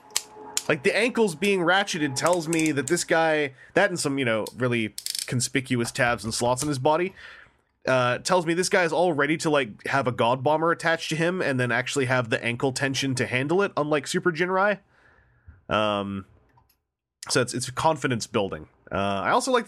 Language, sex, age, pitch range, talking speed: English, male, 20-39, 115-160 Hz, 190 wpm